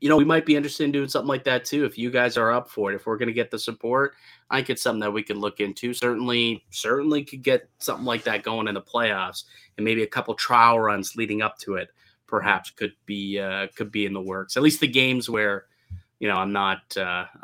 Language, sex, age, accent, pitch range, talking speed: English, male, 20-39, American, 105-125 Hz, 260 wpm